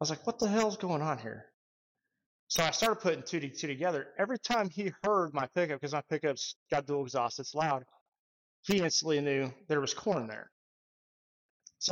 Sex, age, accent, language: male, 20-39, American, English